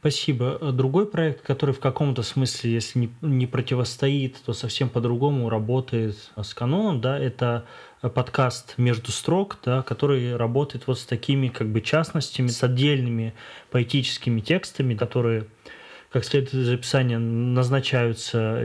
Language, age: Russian, 20-39